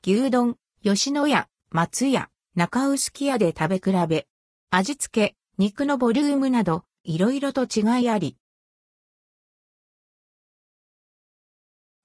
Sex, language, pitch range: female, Japanese, 185-265 Hz